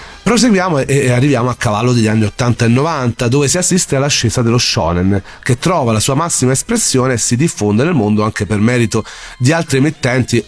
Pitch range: 105-135 Hz